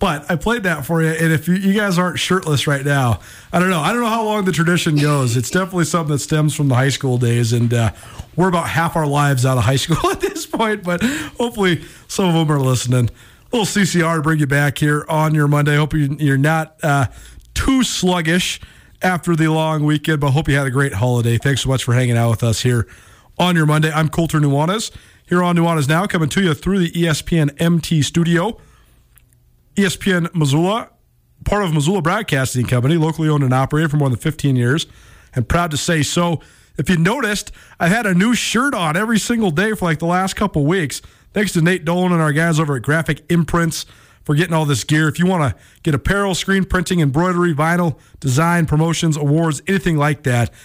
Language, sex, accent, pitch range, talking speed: English, male, American, 140-175 Hz, 220 wpm